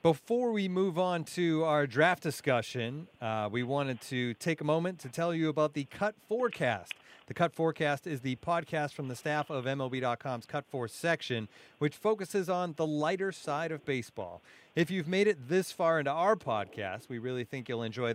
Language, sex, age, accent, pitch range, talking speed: English, male, 30-49, American, 125-165 Hz, 190 wpm